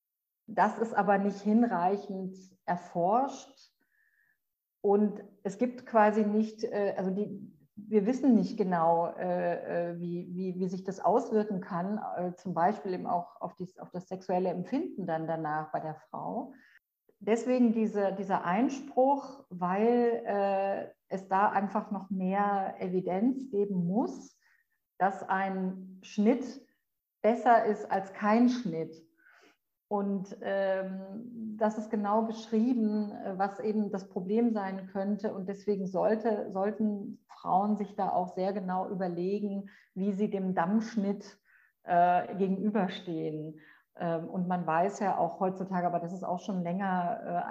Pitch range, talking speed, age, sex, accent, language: 180-215 Hz, 125 wpm, 50-69, female, German, German